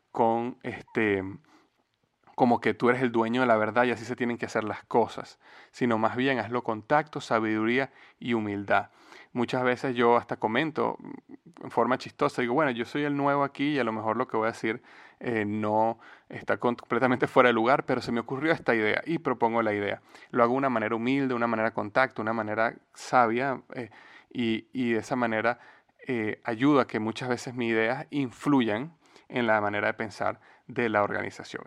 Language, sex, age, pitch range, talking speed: Spanish, male, 30-49, 110-130 Hz, 200 wpm